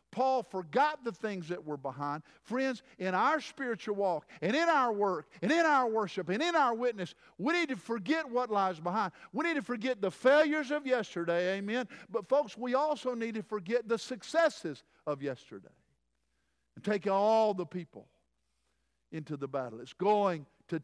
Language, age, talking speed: English, 50-69, 180 wpm